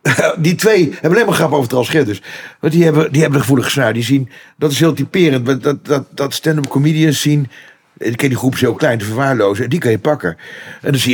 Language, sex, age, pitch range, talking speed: Dutch, male, 50-69, 120-145 Hz, 225 wpm